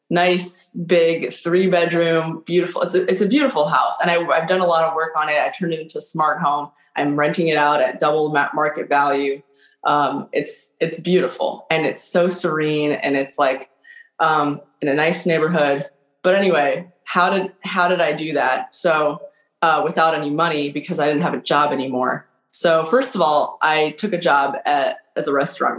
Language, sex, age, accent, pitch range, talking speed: English, female, 20-39, American, 145-180 Hz, 200 wpm